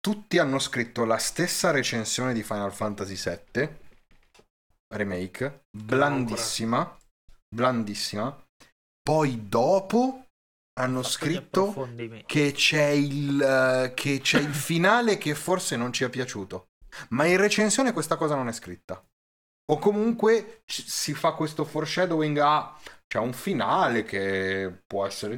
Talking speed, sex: 115 wpm, male